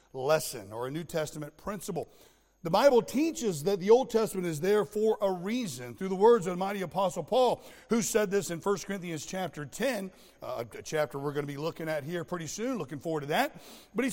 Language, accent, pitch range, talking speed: English, American, 175-240 Hz, 220 wpm